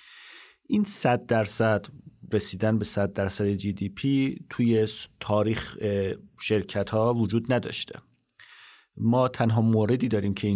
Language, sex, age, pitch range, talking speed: Persian, male, 40-59, 100-120 Hz, 120 wpm